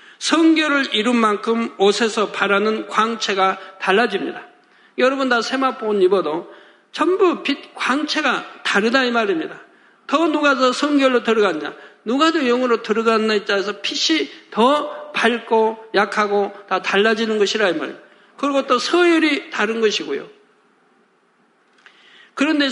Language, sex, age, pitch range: Korean, male, 50-69, 215-290 Hz